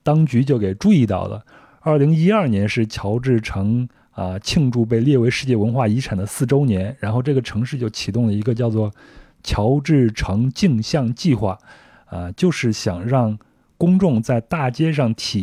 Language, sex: Chinese, male